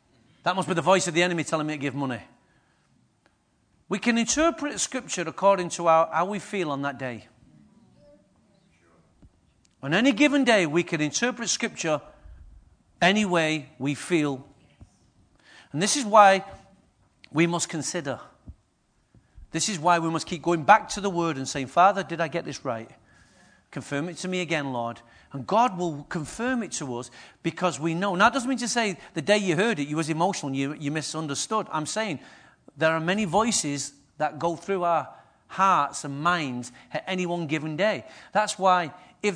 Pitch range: 145-200 Hz